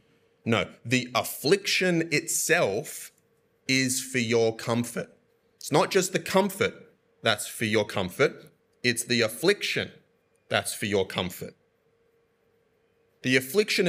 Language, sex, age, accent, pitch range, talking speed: English, male, 30-49, Australian, 115-145 Hz, 110 wpm